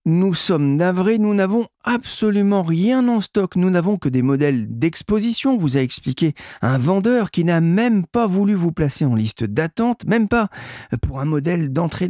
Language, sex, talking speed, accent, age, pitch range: French, male, 180 wpm, French, 40-59, 135-210 Hz